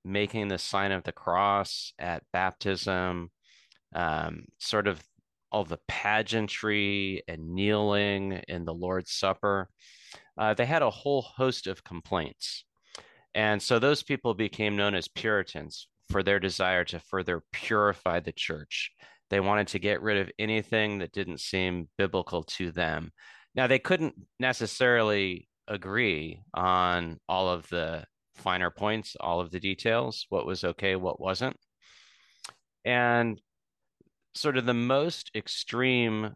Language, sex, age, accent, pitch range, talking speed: English, male, 30-49, American, 95-110 Hz, 135 wpm